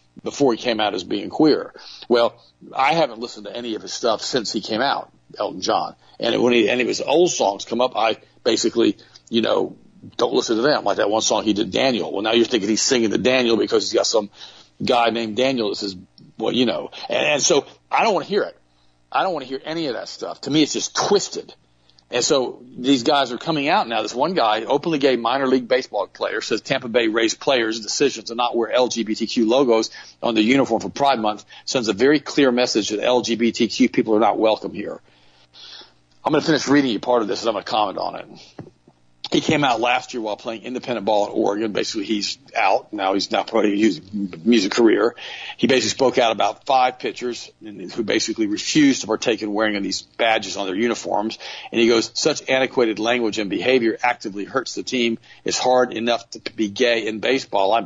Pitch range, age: 105-130 Hz, 40-59